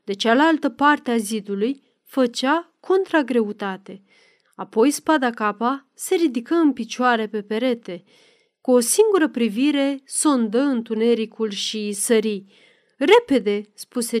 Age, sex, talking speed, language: 30-49, female, 110 wpm, Romanian